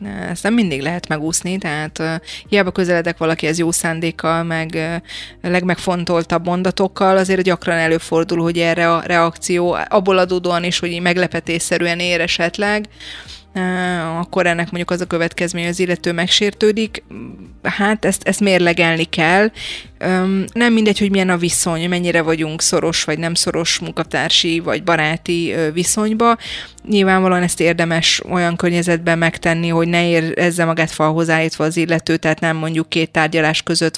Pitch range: 165-185 Hz